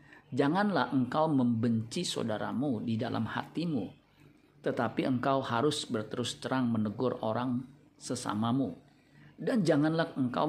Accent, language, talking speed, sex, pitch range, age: native, Indonesian, 105 wpm, male, 120-145 Hz, 40-59